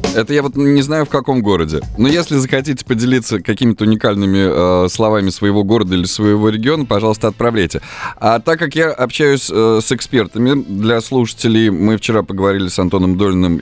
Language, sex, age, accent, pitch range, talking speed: Russian, male, 20-39, native, 100-125 Hz, 170 wpm